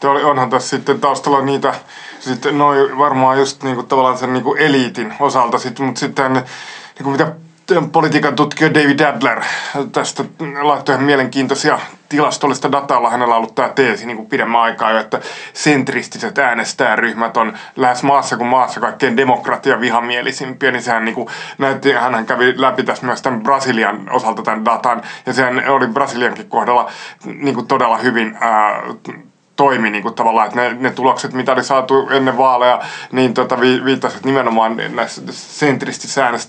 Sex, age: male, 20-39